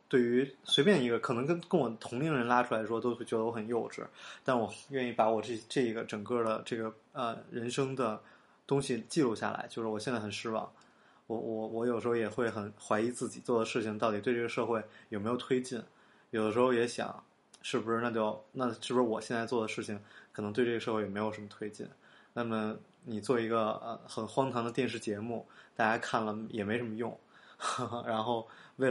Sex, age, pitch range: male, 20-39, 110-125 Hz